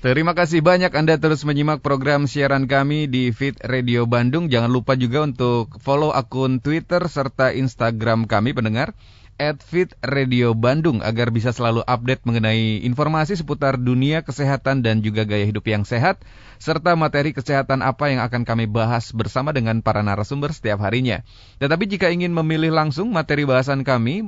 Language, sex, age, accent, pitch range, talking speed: Indonesian, male, 30-49, native, 115-150 Hz, 160 wpm